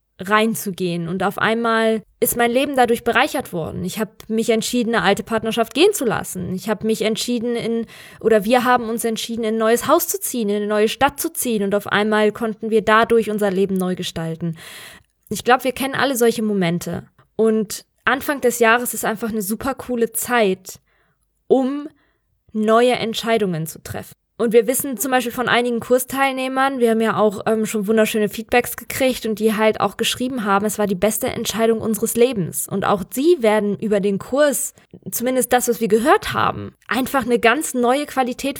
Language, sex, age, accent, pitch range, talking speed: German, female, 20-39, German, 210-250 Hz, 190 wpm